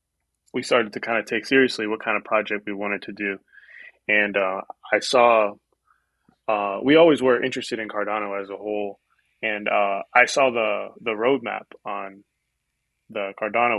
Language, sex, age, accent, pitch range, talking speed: English, male, 20-39, American, 105-125 Hz, 170 wpm